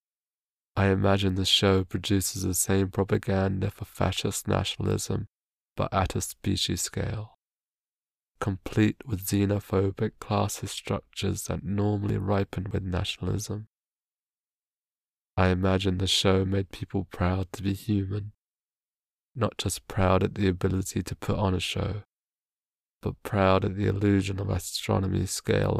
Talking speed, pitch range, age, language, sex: 125 wpm, 95-110 Hz, 20-39, English, male